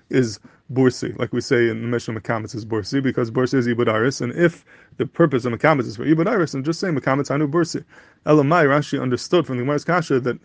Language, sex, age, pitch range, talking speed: English, male, 20-39, 125-150 Hz, 220 wpm